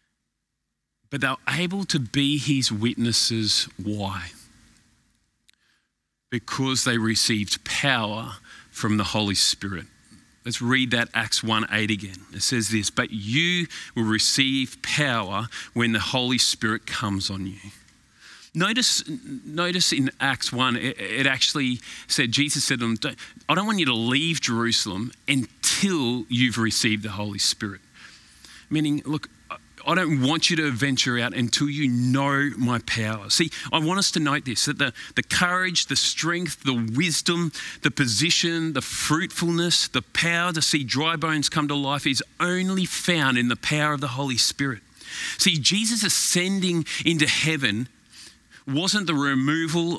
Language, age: English, 40-59